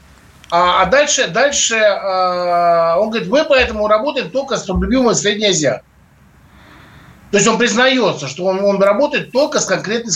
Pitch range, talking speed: 185-255 Hz, 140 wpm